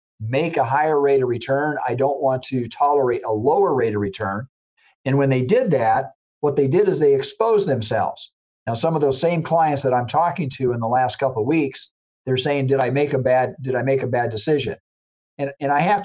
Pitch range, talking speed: 125-155 Hz, 230 wpm